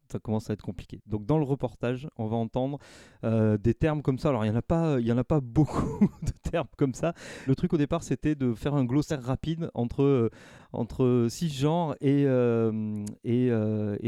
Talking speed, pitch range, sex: 195 wpm, 120-150 Hz, male